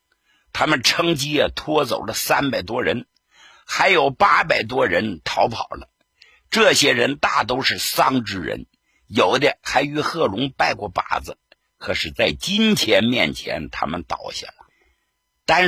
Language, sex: Chinese, male